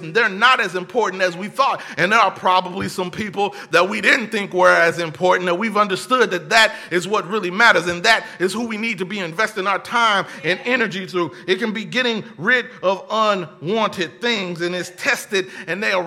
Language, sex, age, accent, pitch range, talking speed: English, male, 30-49, American, 180-230 Hz, 215 wpm